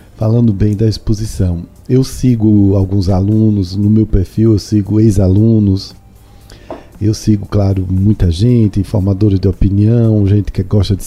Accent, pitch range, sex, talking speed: Brazilian, 100-130 Hz, male, 140 wpm